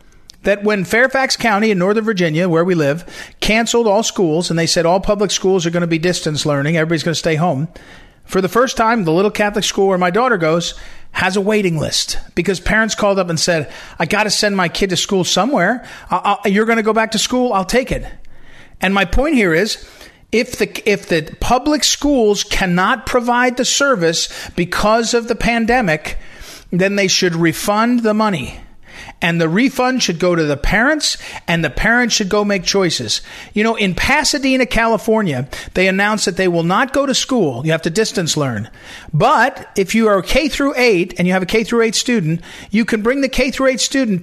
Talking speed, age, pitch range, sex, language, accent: 210 wpm, 40-59, 175-235 Hz, male, English, American